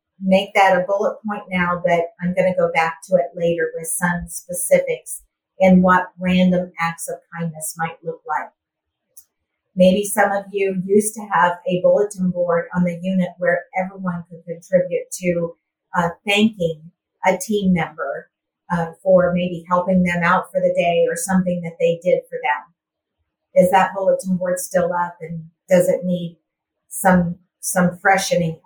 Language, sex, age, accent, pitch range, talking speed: English, female, 50-69, American, 170-190 Hz, 165 wpm